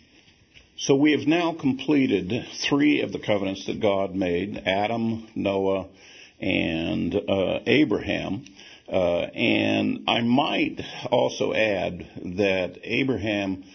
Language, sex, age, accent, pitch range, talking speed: English, male, 50-69, American, 95-125 Hz, 110 wpm